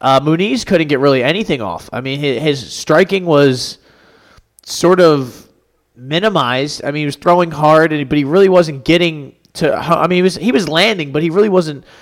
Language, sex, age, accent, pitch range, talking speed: English, male, 20-39, American, 125-150 Hz, 200 wpm